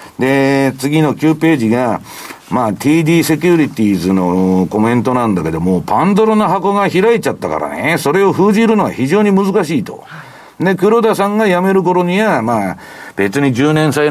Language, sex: Japanese, male